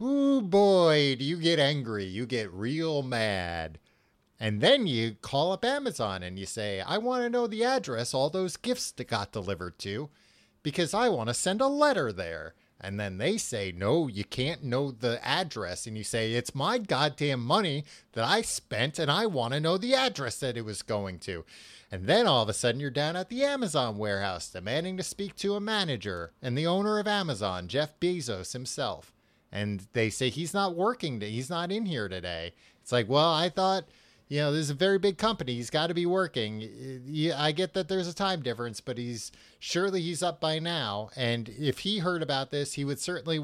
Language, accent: English, American